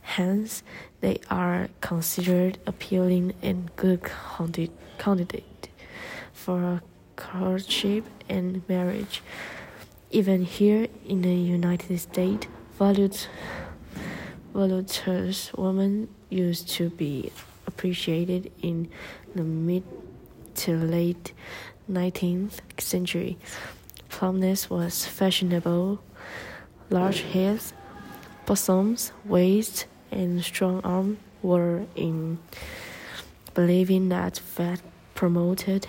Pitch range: 175-195 Hz